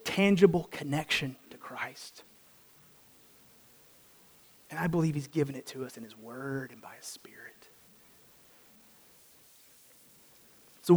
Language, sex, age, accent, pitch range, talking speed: English, male, 30-49, American, 160-255 Hz, 110 wpm